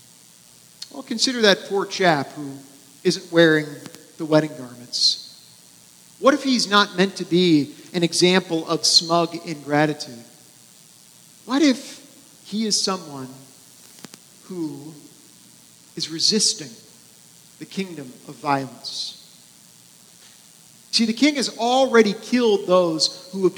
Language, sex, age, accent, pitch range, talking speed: English, male, 50-69, American, 145-190 Hz, 110 wpm